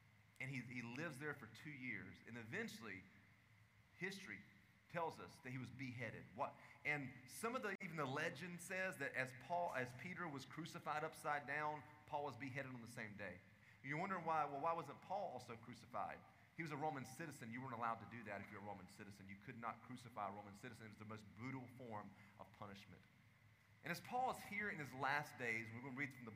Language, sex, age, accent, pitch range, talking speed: English, male, 30-49, American, 110-150 Hz, 220 wpm